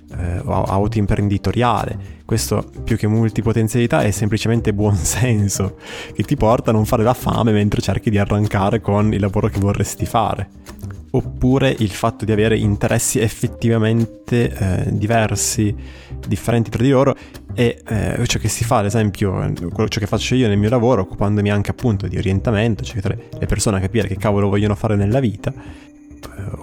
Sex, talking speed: male, 165 wpm